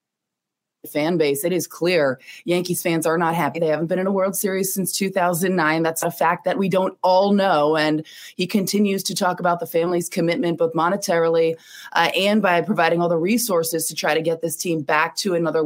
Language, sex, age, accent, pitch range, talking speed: English, female, 20-39, American, 160-190 Hz, 205 wpm